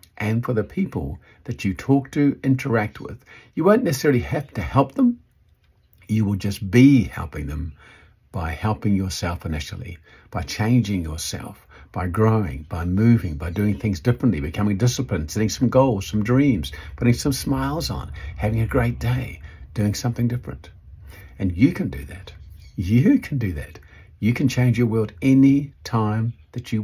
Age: 50-69